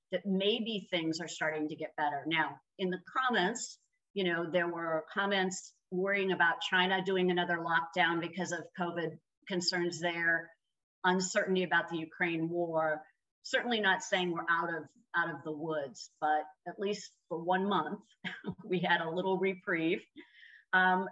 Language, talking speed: English, 155 wpm